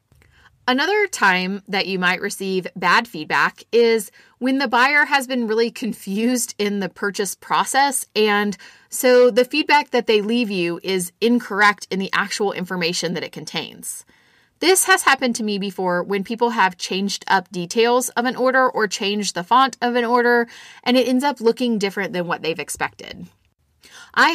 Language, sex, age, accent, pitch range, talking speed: English, female, 30-49, American, 190-245 Hz, 170 wpm